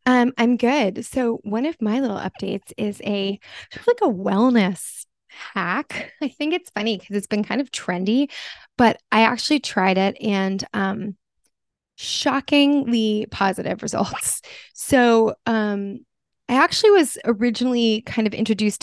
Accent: American